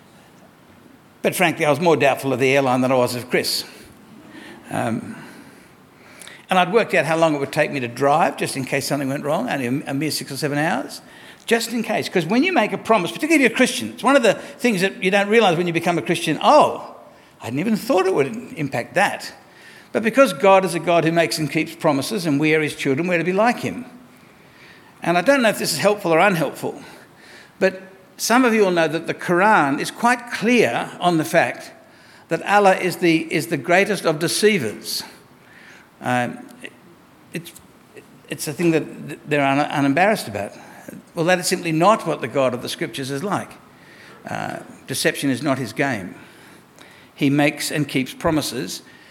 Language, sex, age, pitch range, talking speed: English, male, 60-79, 145-205 Hz, 200 wpm